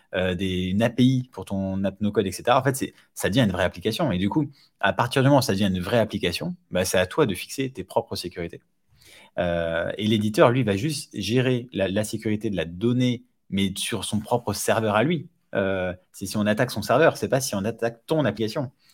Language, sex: French, male